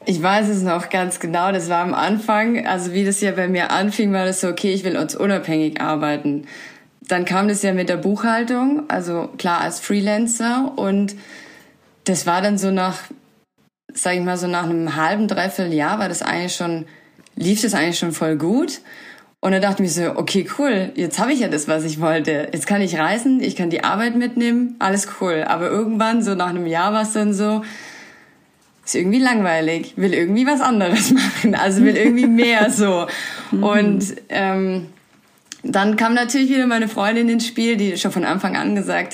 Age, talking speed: 20-39, 195 wpm